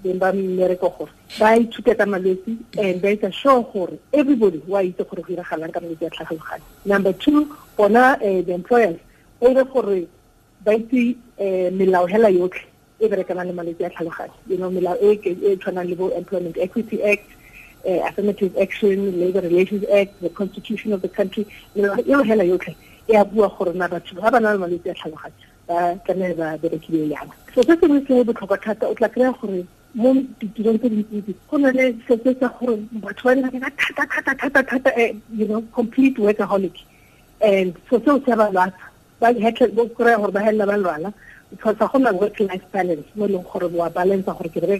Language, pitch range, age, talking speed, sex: English, 180-230 Hz, 40-59, 60 wpm, female